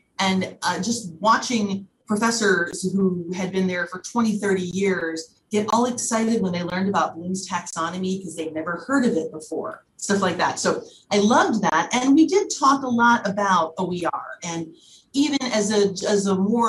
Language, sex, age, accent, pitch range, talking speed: English, female, 30-49, American, 170-210 Hz, 180 wpm